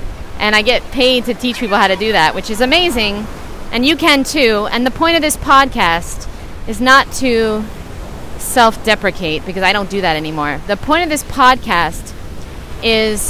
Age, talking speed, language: 30-49, 180 wpm, English